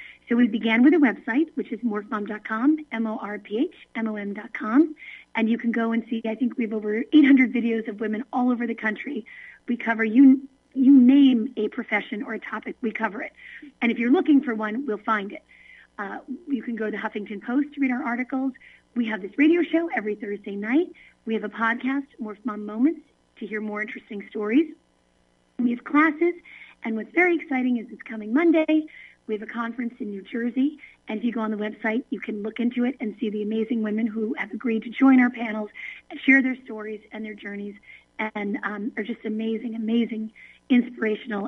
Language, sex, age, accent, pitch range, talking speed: English, female, 40-59, American, 220-270 Hz, 205 wpm